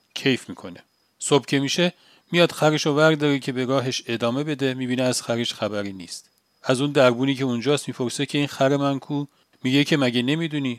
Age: 40-59